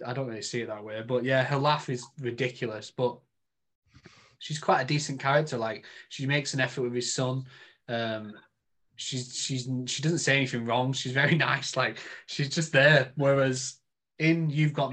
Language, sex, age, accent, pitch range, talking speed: English, male, 20-39, British, 120-145 Hz, 175 wpm